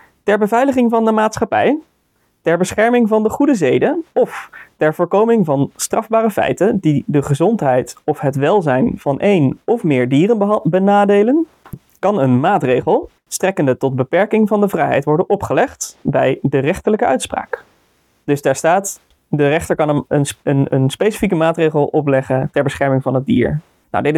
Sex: male